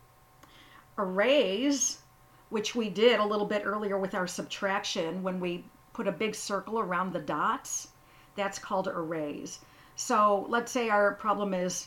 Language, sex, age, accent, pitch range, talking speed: English, female, 50-69, American, 185-235 Hz, 145 wpm